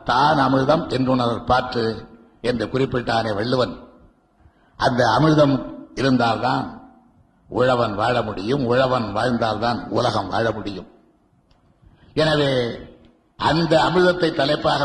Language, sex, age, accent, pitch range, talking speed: Tamil, male, 60-79, native, 115-145 Hz, 80 wpm